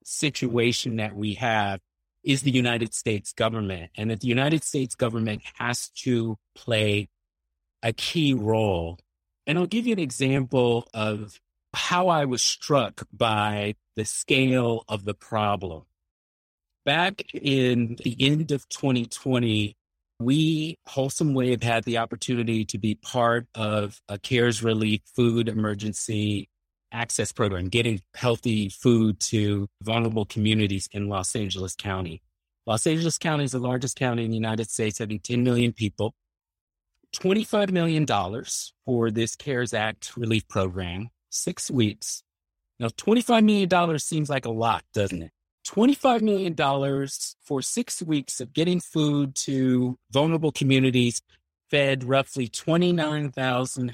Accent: American